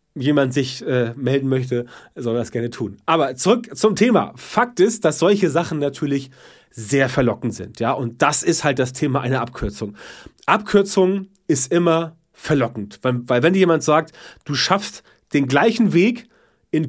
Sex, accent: male, German